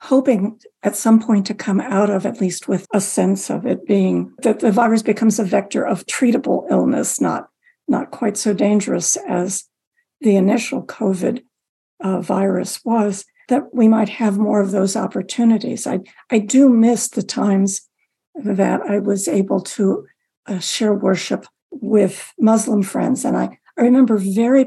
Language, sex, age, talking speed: English, female, 60-79, 165 wpm